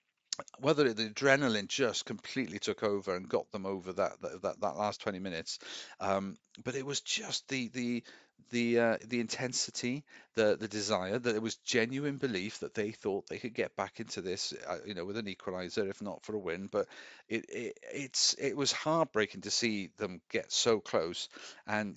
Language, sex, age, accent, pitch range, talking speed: English, male, 50-69, British, 100-125 Hz, 195 wpm